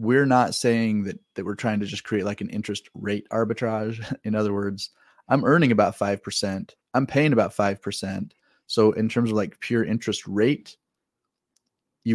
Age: 30-49